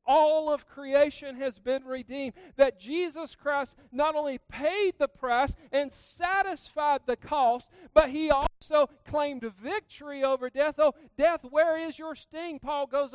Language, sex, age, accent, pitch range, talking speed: English, male, 50-69, American, 260-305 Hz, 150 wpm